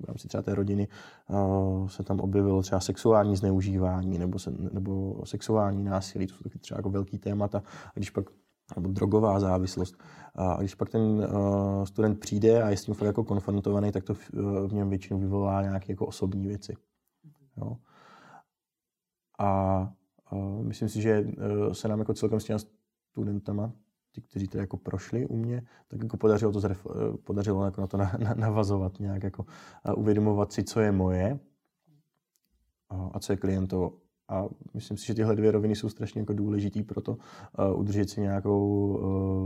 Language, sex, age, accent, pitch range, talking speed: Czech, male, 20-39, native, 95-110 Hz, 170 wpm